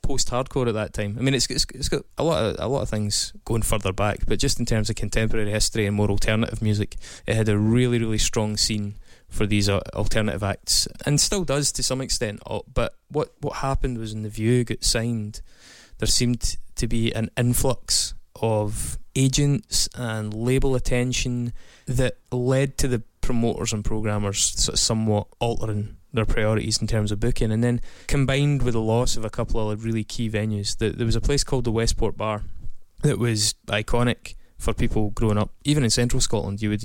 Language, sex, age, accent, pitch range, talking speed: English, male, 20-39, British, 105-120 Hz, 200 wpm